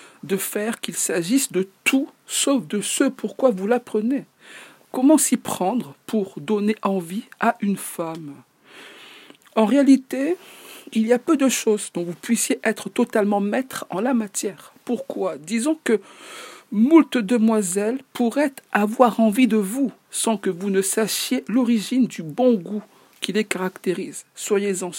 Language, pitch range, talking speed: French, 195-260 Hz, 145 wpm